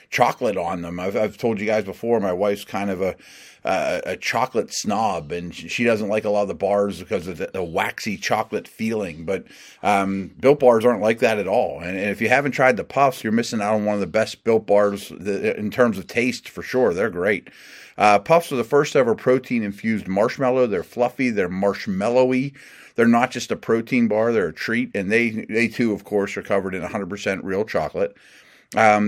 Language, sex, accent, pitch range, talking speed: English, male, American, 100-120 Hz, 220 wpm